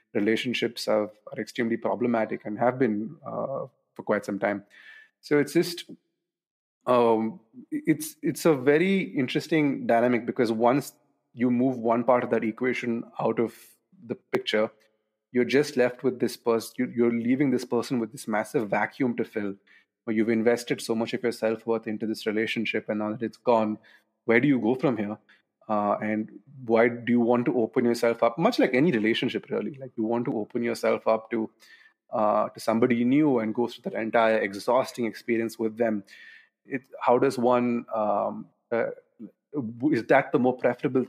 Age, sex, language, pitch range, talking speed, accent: 30-49, male, English, 110-130 Hz, 180 wpm, Indian